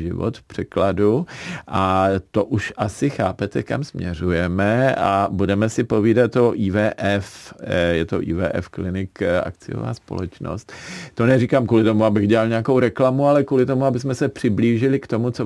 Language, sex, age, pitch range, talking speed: Czech, male, 50-69, 100-130 Hz, 150 wpm